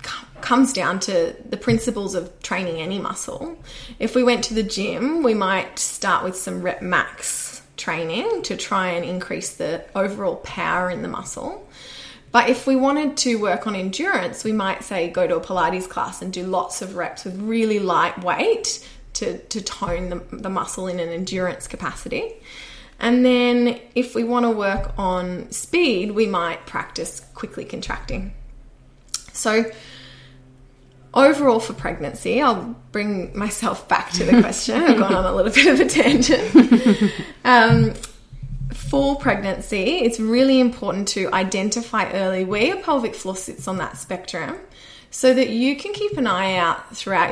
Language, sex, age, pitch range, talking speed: English, female, 20-39, 185-245 Hz, 160 wpm